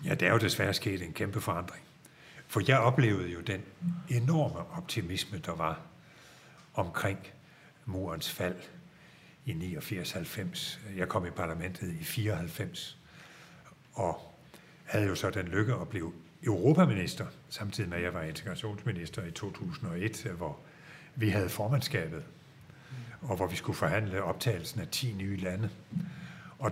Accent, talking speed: native, 135 wpm